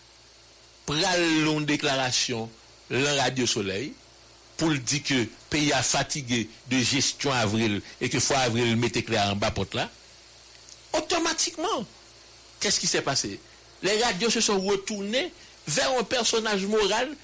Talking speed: 145 wpm